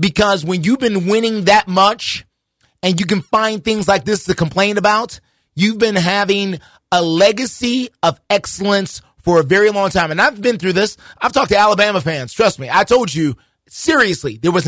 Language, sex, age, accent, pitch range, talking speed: English, male, 30-49, American, 165-215 Hz, 190 wpm